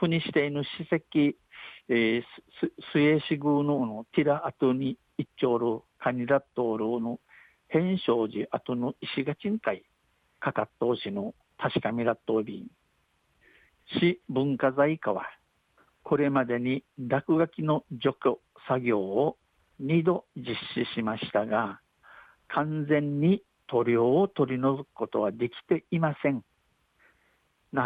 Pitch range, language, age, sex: 120-150 Hz, Japanese, 60-79, male